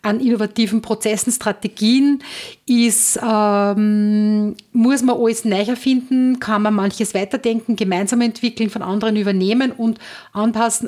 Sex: female